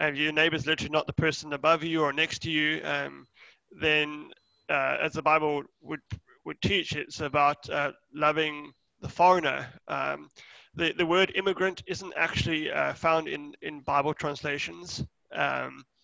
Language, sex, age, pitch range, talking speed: English, male, 30-49, 145-160 Hz, 155 wpm